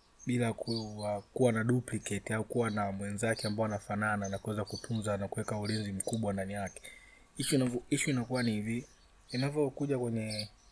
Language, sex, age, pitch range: Swahili, male, 30-49, 105-125 Hz